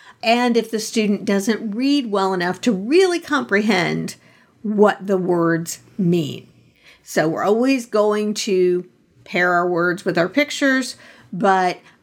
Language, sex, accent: English, female, American